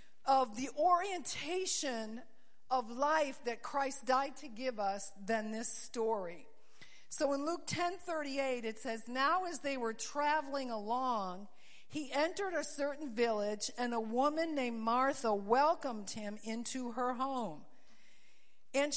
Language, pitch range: English, 230-290 Hz